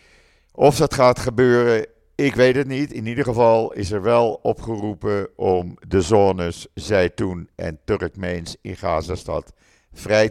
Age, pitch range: 50-69, 80-110 Hz